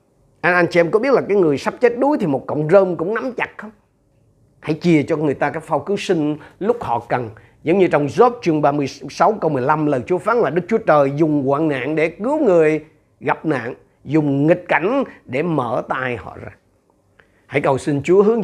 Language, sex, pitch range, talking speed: Vietnamese, male, 140-185 Hz, 215 wpm